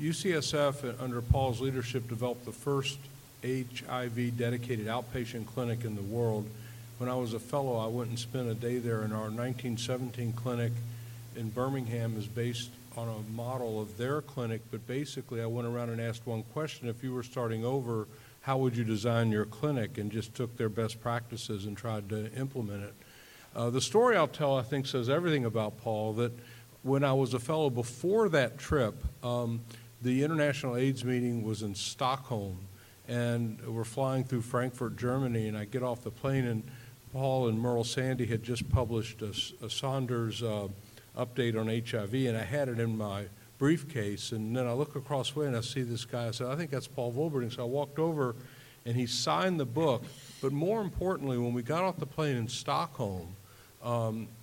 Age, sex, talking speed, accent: 50-69, male, 190 wpm, American